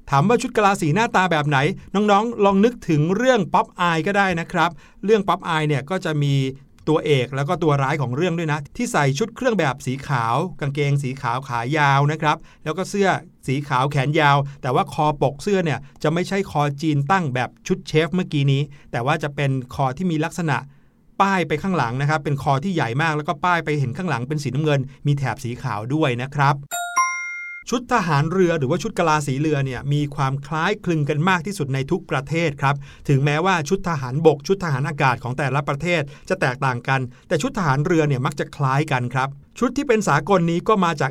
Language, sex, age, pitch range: Thai, male, 60-79, 140-180 Hz